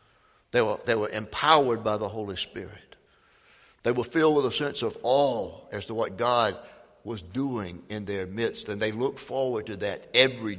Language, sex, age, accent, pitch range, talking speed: English, male, 60-79, American, 105-140 Hz, 185 wpm